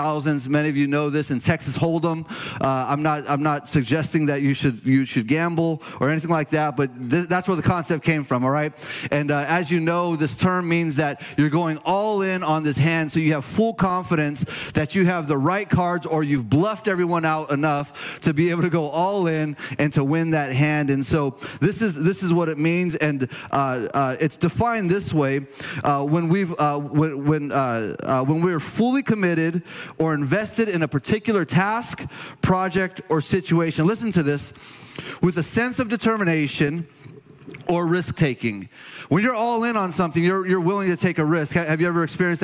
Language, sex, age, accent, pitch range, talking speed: English, male, 30-49, American, 145-180 Hz, 200 wpm